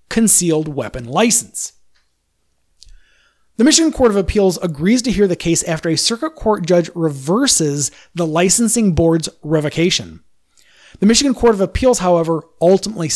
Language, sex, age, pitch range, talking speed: English, male, 30-49, 165-205 Hz, 135 wpm